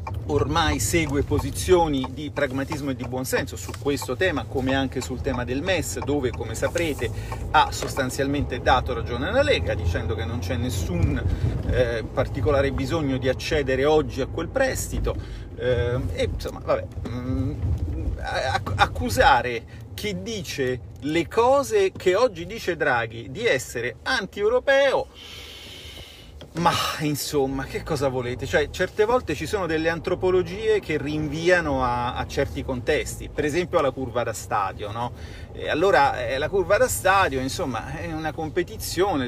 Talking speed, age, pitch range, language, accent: 140 wpm, 40-59, 110-165 Hz, Italian, native